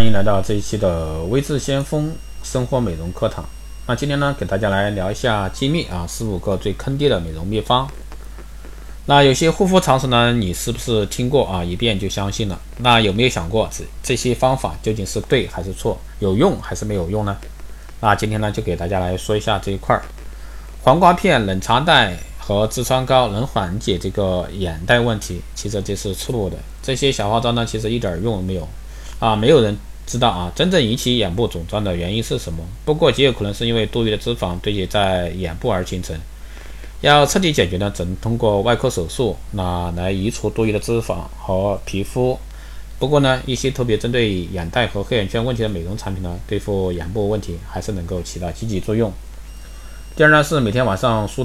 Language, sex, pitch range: Chinese, male, 90-120 Hz